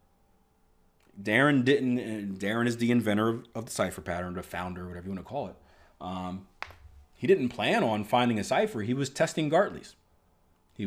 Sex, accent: male, American